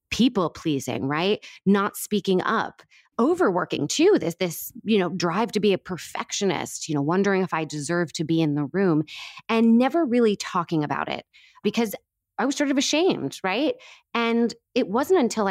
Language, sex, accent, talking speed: English, female, American, 175 wpm